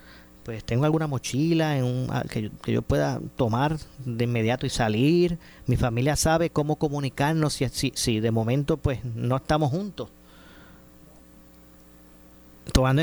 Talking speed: 145 wpm